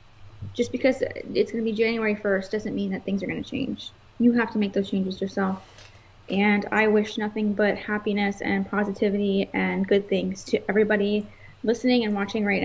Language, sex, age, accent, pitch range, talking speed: English, female, 20-39, American, 195-215 Hz, 190 wpm